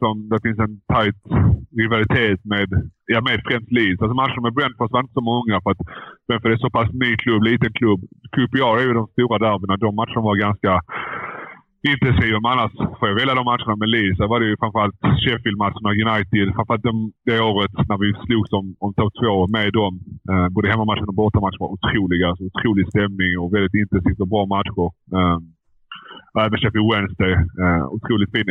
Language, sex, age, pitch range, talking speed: Swedish, male, 30-49, 95-115 Hz, 190 wpm